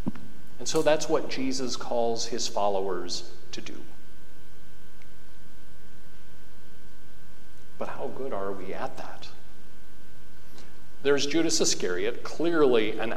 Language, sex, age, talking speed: English, male, 50-69, 100 wpm